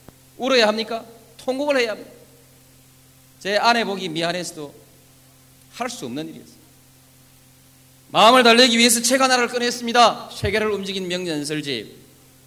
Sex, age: male, 40-59